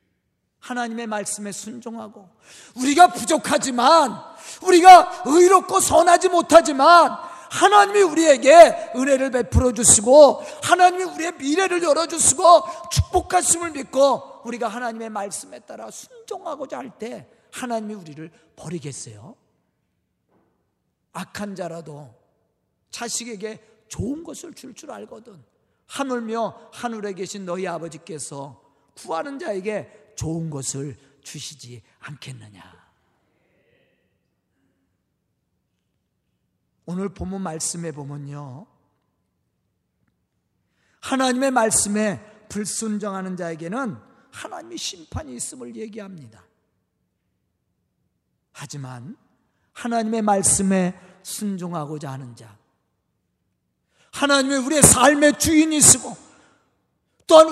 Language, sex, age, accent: Korean, male, 40-59, native